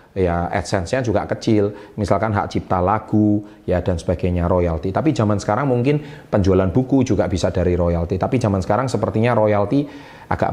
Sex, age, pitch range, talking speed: male, 30-49, 100-120 Hz, 160 wpm